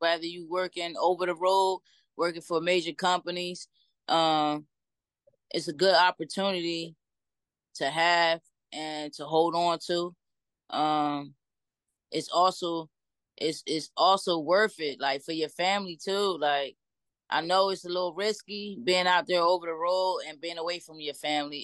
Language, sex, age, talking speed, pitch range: English, female, 20-39, 150 wpm, 150-180 Hz